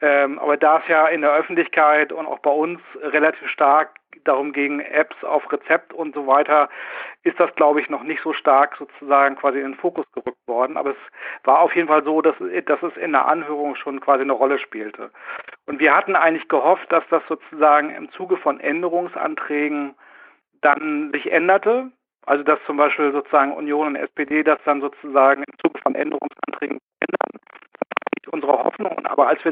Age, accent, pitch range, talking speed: 50-69, German, 140-155 Hz, 185 wpm